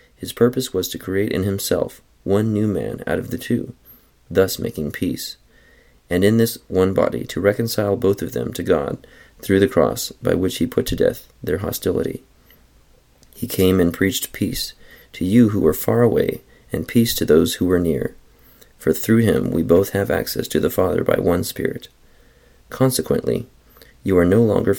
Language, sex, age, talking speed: English, male, 40-59, 185 wpm